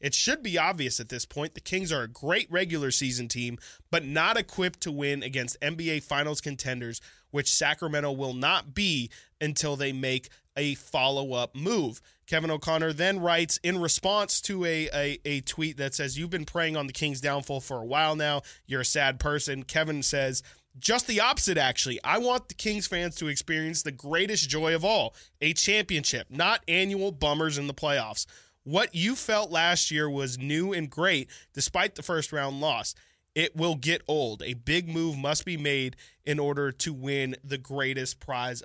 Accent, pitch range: American, 140-170 Hz